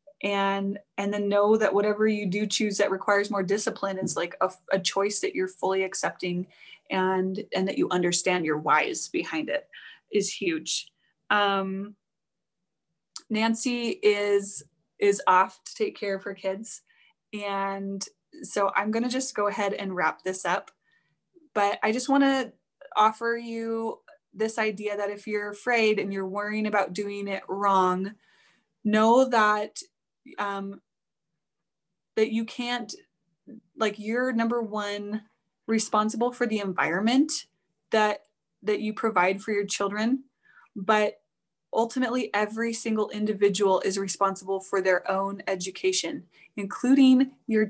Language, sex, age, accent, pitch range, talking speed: English, female, 20-39, American, 195-225 Hz, 140 wpm